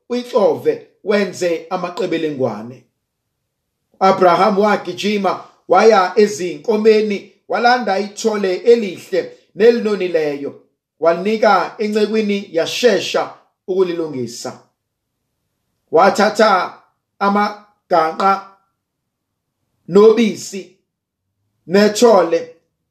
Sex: male